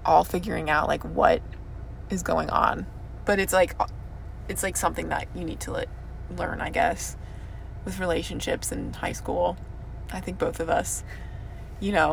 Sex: female